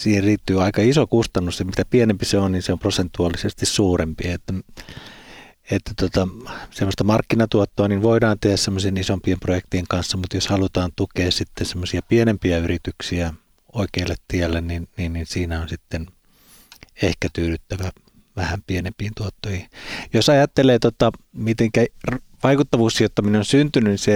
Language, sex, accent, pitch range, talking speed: Finnish, male, native, 90-115 Hz, 140 wpm